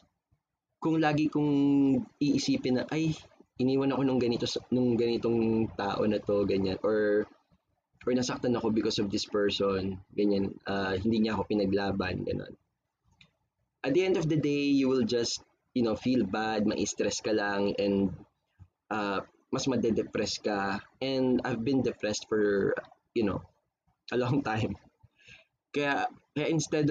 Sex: male